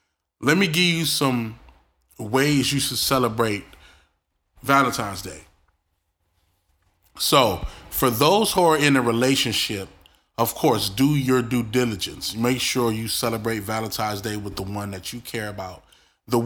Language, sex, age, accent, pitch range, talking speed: English, male, 30-49, American, 110-140 Hz, 140 wpm